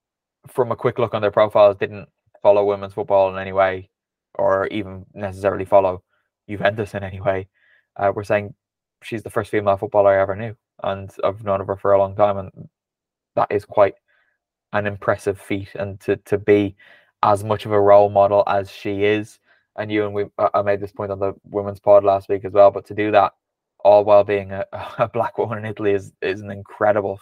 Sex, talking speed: male, 205 wpm